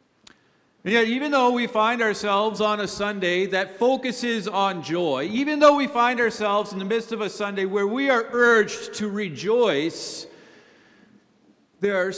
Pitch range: 135-185 Hz